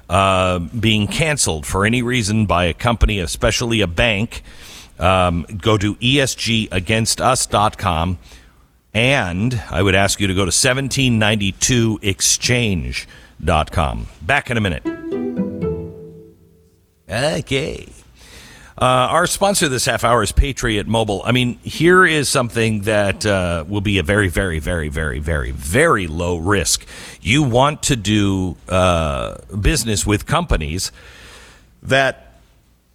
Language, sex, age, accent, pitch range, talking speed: English, male, 50-69, American, 90-120 Hz, 120 wpm